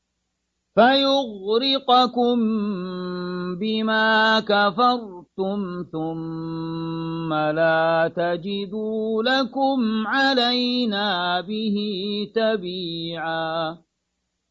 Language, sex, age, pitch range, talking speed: Arabic, male, 40-59, 175-240 Hz, 40 wpm